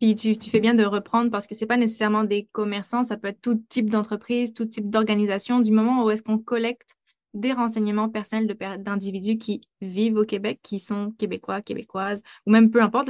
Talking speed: 215 wpm